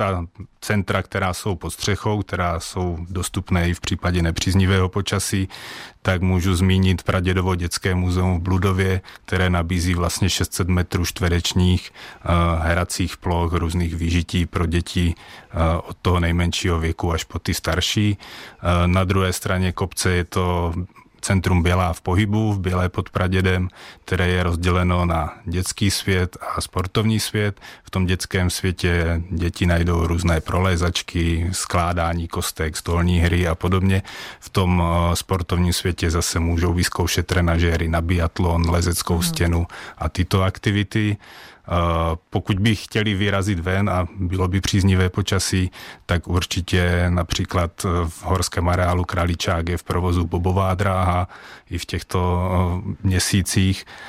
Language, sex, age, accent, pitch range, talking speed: Czech, male, 30-49, native, 85-95 Hz, 135 wpm